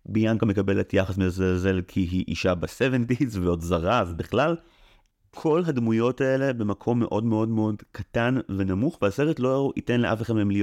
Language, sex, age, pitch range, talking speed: Hebrew, male, 30-49, 95-120 Hz, 155 wpm